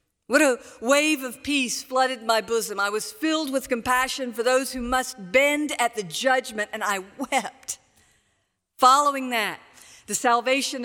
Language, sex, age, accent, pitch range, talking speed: English, female, 50-69, American, 225-280 Hz, 155 wpm